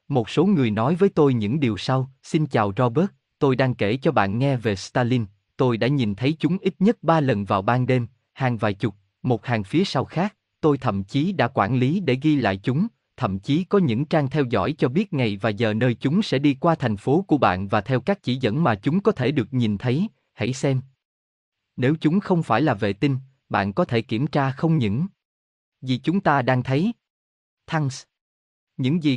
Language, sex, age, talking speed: Vietnamese, male, 20-39, 220 wpm